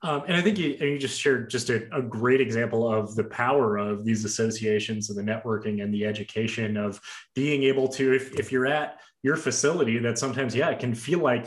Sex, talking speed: male, 220 wpm